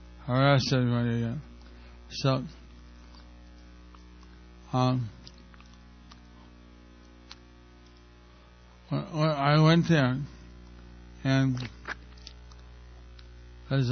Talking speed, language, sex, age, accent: 50 wpm, English, male, 60-79, American